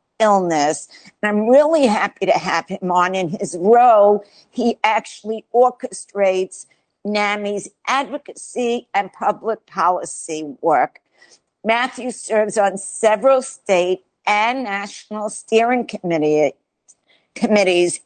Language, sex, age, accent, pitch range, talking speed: English, female, 50-69, American, 185-230 Hz, 100 wpm